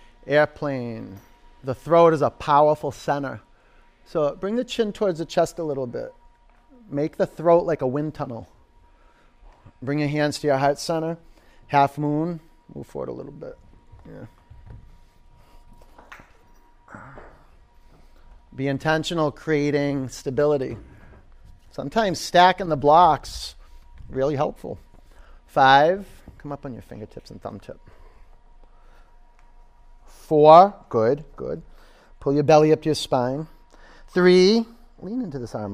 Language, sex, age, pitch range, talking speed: English, male, 30-49, 115-165 Hz, 125 wpm